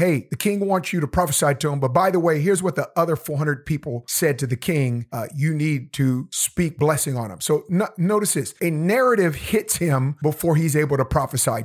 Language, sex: English, male